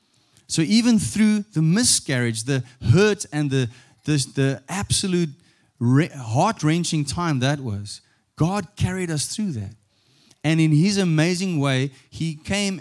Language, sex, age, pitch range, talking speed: English, male, 20-39, 115-155 Hz, 135 wpm